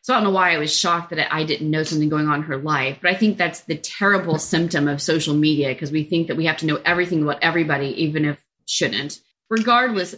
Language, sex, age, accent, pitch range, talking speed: English, female, 30-49, American, 155-210 Hz, 260 wpm